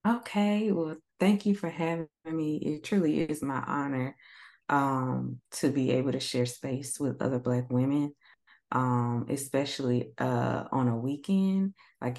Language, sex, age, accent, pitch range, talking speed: English, female, 20-39, American, 125-150 Hz, 150 wpm